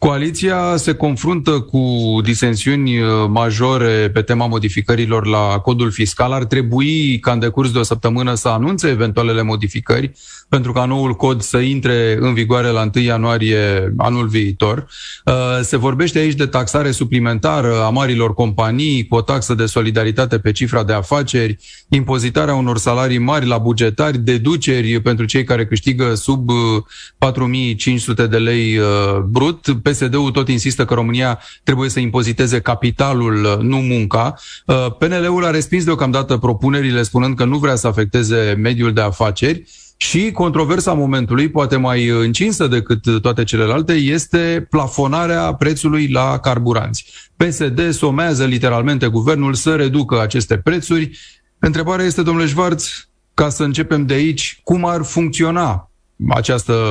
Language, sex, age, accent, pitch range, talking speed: Romanian, male, 30-49, native, 115-145 Hz, 140 wpm